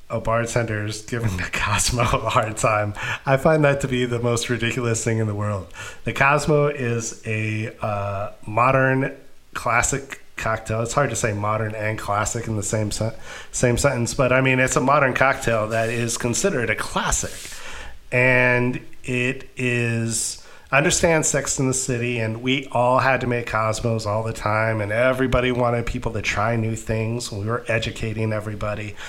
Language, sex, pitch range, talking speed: English, male, 110-130 Hz, 175 wpm